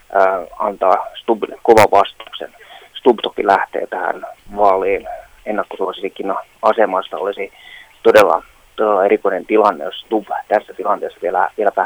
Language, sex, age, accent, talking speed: Finnish, male, 20-39, native, 110 wpm